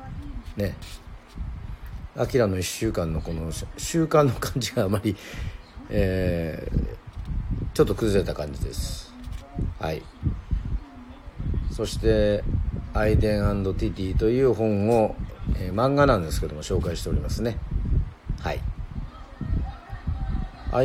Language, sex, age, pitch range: Japanese, male, 50-69, 80-110 Hz